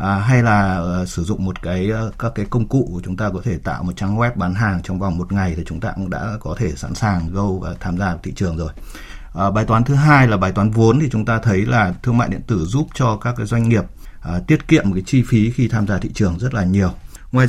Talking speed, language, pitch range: 290 wpm, Vietnamese, 95-120 Hz